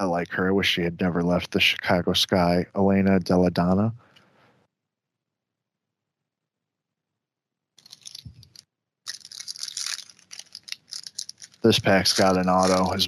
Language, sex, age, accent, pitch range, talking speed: English, male, 20-39, American, 95-120 Hz, 95 wpm